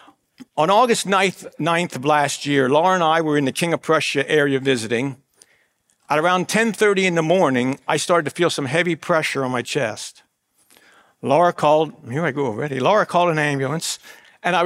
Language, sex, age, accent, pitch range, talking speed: English, male, 60-79, American, 140-175 Hz, 190 wpm